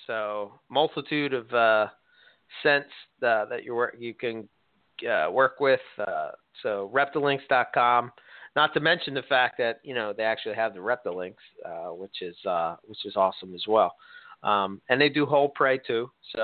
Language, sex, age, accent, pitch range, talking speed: English, male, 40-59, American, 105-140 Hz, 170 wpm